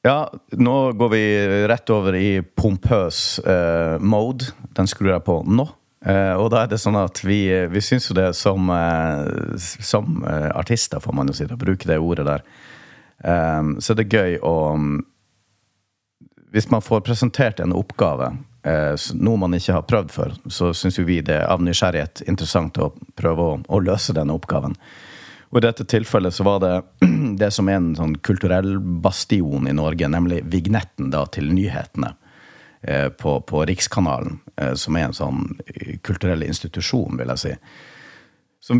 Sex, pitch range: male, 85-110 Hz